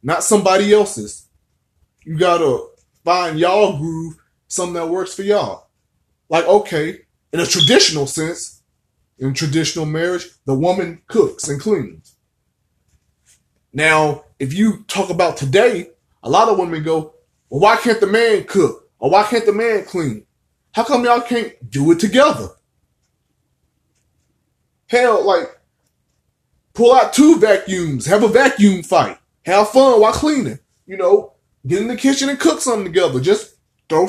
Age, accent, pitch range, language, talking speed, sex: 20-39, American, 155-235 Hz, English, 150 wpm, male